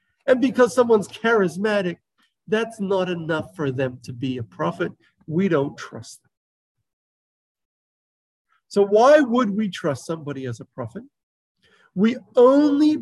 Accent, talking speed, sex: American, 130 wpm, male